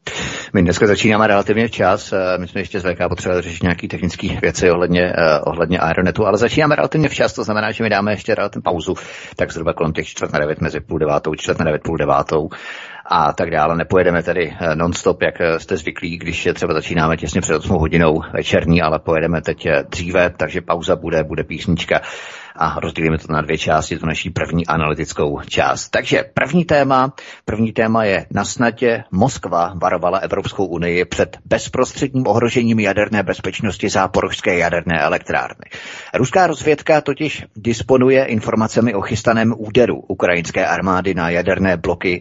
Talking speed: 160 wpm